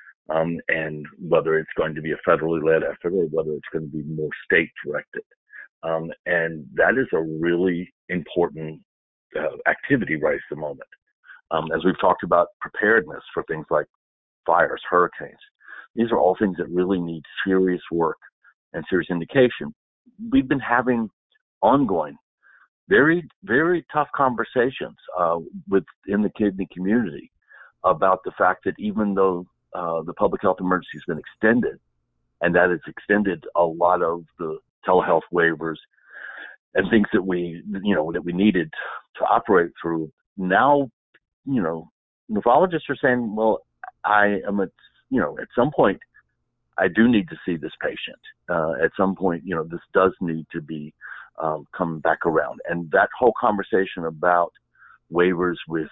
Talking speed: 155 wpm